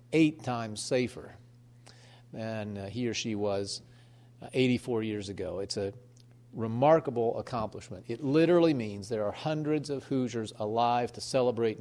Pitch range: 115-130 Hz